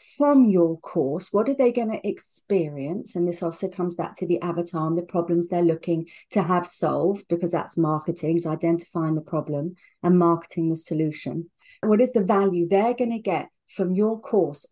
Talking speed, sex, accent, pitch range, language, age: 190 wpm, female, British, 170-195 Hz, English, 40-59